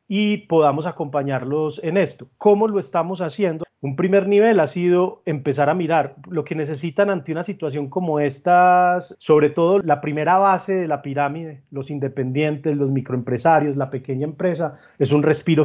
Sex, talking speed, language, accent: male, 165 wpm, Spanish, Colombian